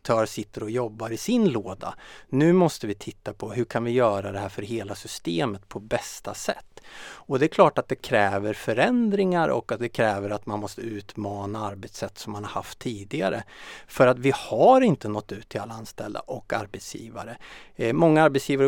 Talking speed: 195 wpm